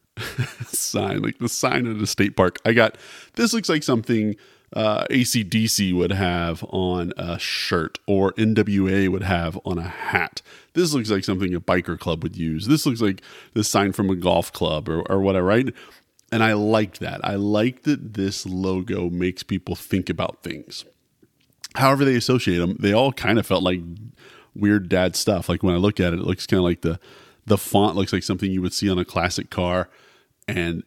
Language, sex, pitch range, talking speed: English, male, 90-110 Hz, 200 wpm